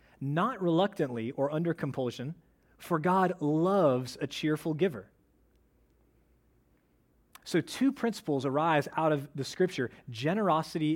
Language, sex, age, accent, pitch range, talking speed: English, male, 30-49, American, 140-180 Hz, 110 wpm